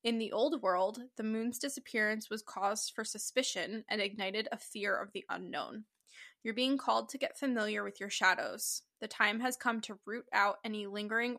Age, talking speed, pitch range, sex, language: 10-29, 190 wpm, 205-235 Hz, female, English